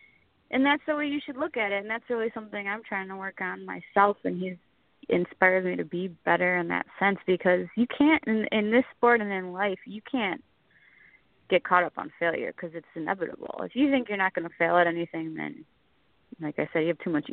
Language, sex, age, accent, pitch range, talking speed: English, female, 20-39, American, 185-230 Hz, 230 wpm